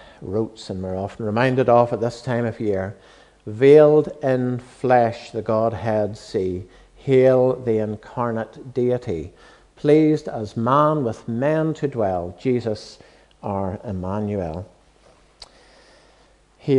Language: English